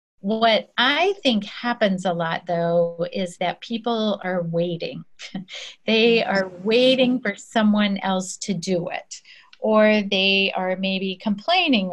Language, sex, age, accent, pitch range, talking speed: English, female, 40-59, American, 175-215 Hz, 130 wpm